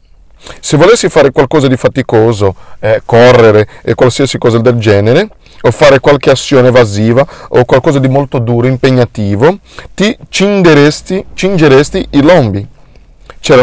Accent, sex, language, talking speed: native, male, Italian, 130 wpm